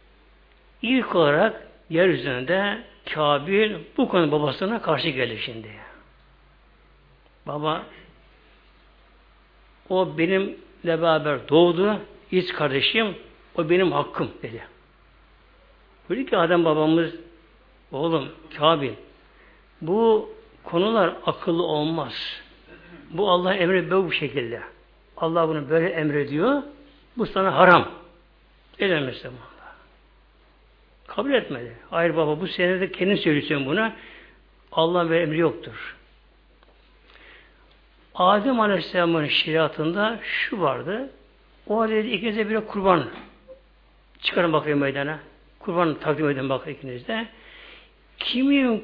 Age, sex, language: 60-79, male, Turkish